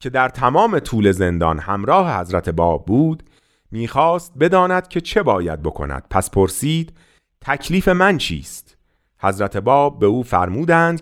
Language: Persian